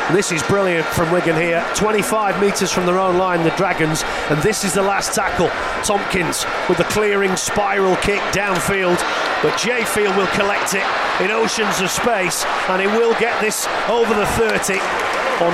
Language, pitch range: English, 175-210 Hz